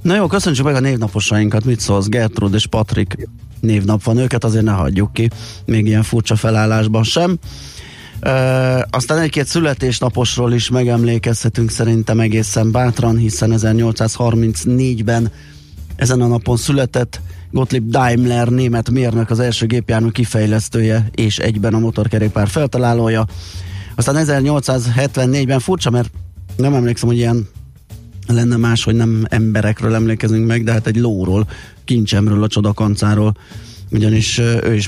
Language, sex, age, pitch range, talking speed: Hungarian, male, 30-49, 110-120 Hz, 130 wpm